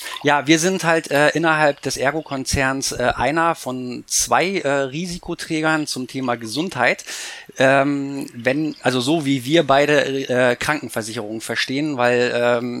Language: German